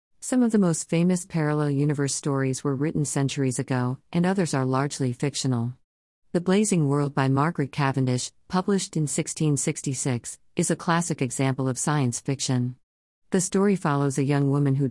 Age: 40-59